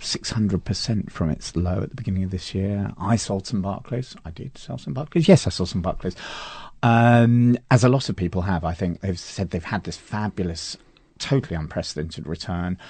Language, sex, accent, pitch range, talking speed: English, male, British, 90-115 Hz, 190 wpm